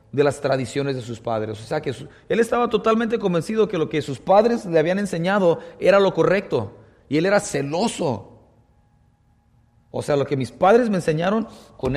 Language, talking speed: English, 185 wpm